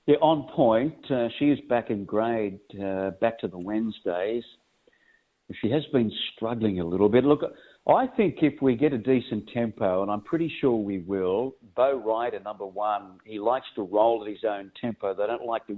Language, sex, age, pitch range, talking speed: English, male, 50-69, 105-135 Hz, 200 wpm